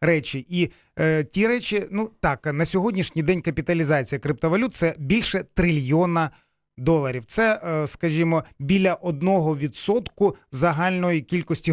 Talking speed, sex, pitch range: 130 wpm, male, 160-195 Hz